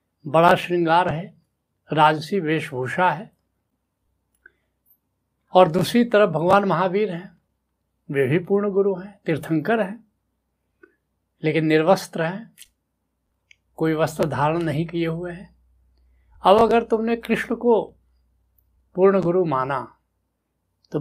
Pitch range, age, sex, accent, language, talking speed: 145-190 Hz, 70-89, male, native, Hindi, 110 wpm